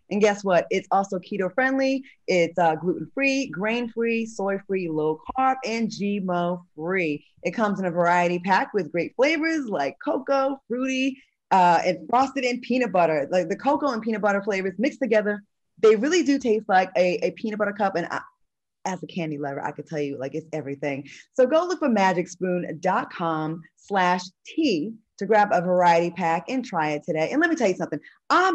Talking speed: 195 wpm